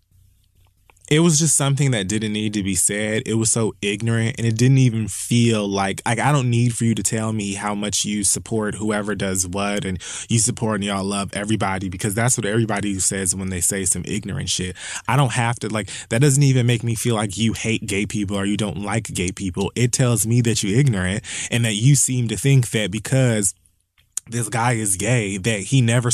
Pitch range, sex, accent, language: 105-150 Hz, male, American, English